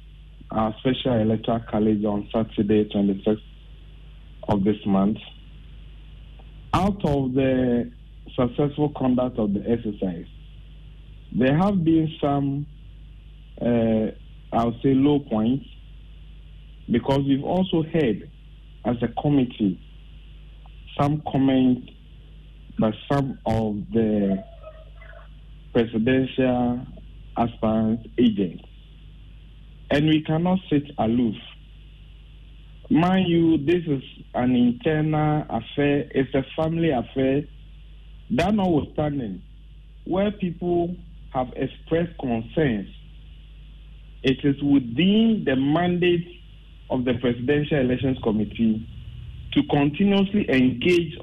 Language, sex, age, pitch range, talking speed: English, male, 50-69, 110-155 Hz, 95 wpm